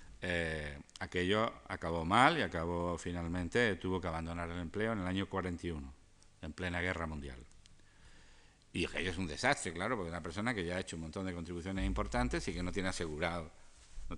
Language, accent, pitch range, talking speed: Spanish, Spanish, 85-100 Hz, 185 wpm